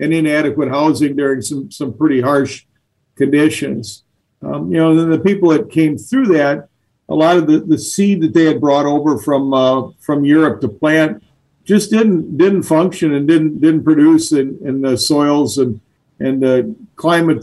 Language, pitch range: English, 140-160 Hz